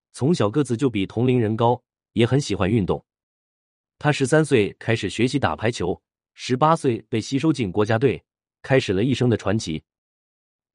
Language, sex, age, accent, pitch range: Chinese, male, 30-49, native, 100-140 Hz